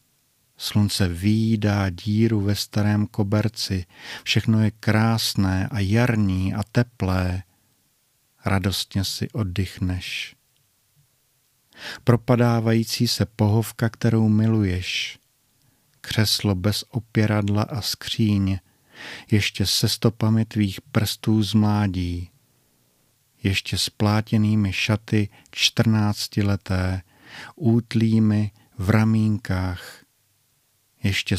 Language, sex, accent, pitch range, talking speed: Czech, male, native, 100-115 Hz, 75 wpm